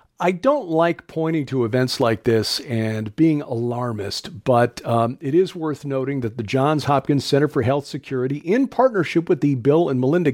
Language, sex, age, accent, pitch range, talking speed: English, male, 50-69, American, 125-165 Hz, 185 wpm